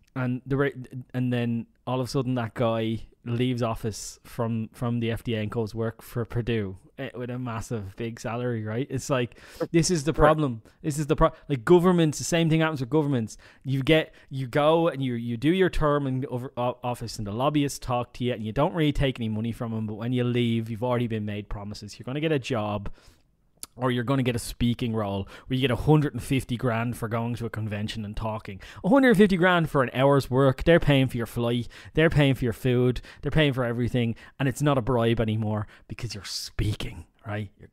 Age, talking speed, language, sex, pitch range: 20-39, 220 wpm, English, male, 115-145 Hz